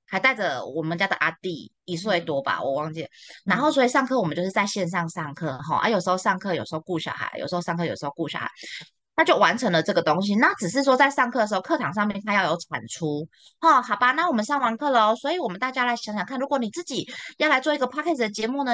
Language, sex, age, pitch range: Chinese, female, 20-39, 170-250 Hz